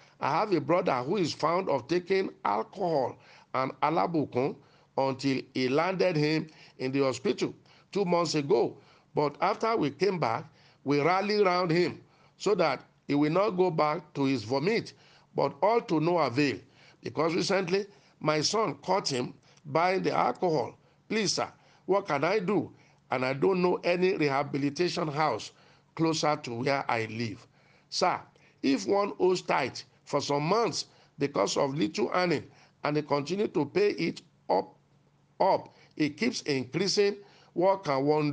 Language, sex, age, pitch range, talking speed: English, male, 50-69, 140-185 Hz, 155 wpm